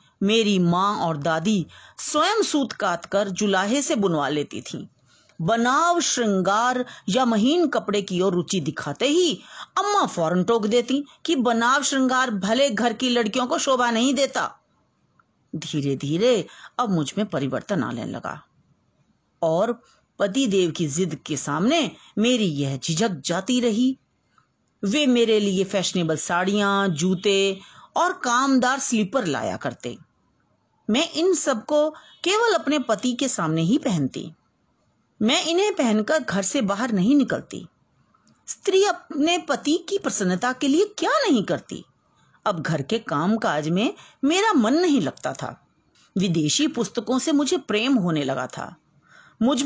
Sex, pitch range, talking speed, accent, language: female, 185-280 Hz, 140 wpm, native, Hindi